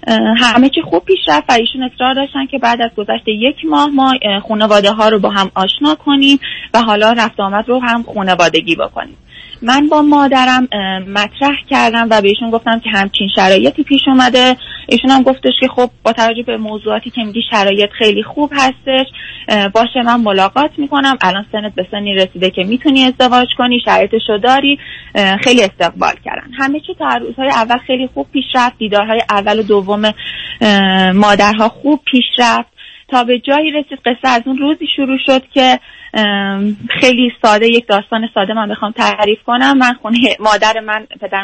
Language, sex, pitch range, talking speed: Persian, female, 210-270 Hz, 165 wpm